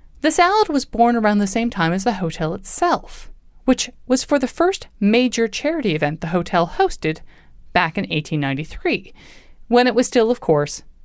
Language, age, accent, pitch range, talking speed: English, 20-39, American, 160-250 Hz, 175 wpm